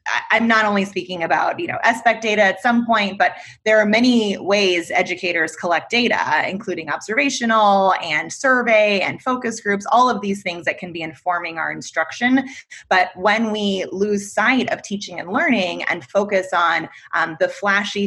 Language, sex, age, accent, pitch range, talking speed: English, female, 20-39, American, 175-220 Hz, 175 wpm